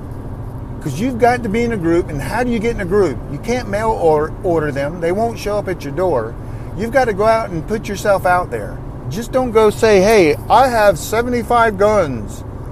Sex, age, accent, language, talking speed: male, 50-69, American, English, 225 wpm